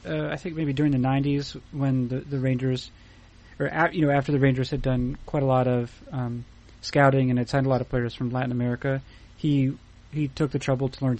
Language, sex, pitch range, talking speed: English, male, 115-145 Hz, 230 wpm